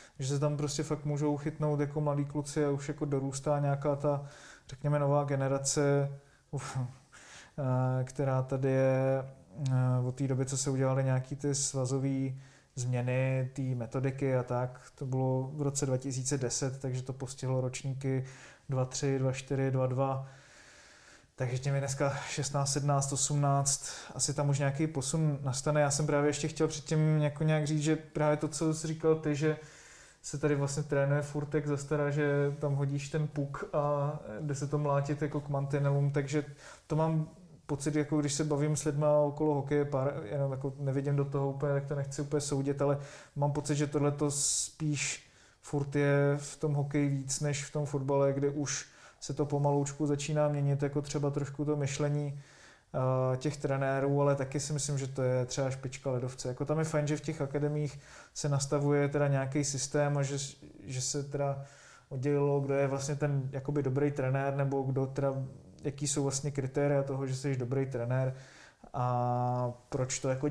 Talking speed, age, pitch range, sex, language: 170 wpm, 20-39, 135-150 Hz, male, Czech